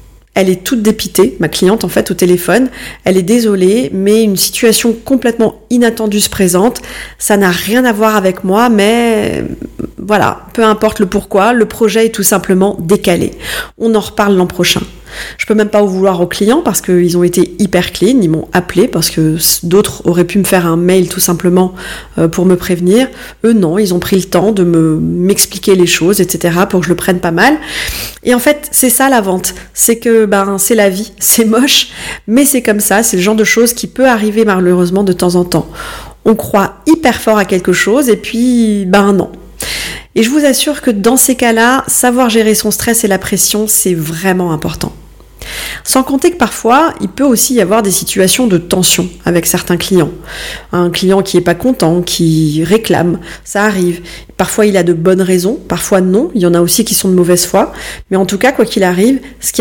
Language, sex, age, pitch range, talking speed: French, female, 30-49, 180-230 Hz, 210 wpm